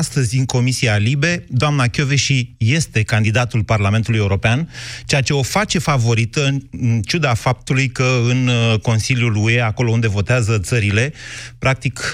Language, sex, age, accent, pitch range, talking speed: Romanian, male, 30-49, native, 110-125 Hz, 135 wpm